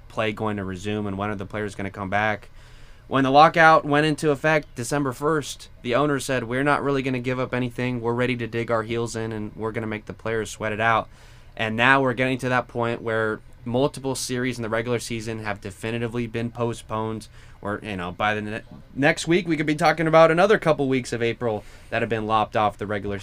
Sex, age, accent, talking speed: male, 20-39, American, 240 wpm